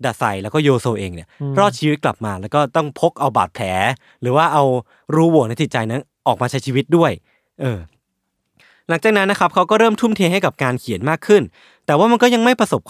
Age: 20-39